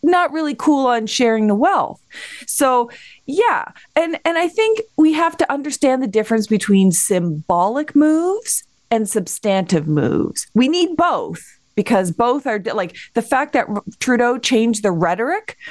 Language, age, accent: English, 30-49, American